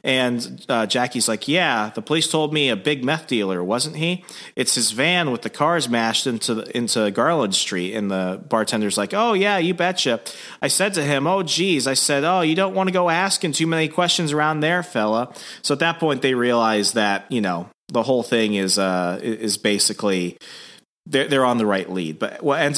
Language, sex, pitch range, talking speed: English, male, 105-175 Hz, 215 wpm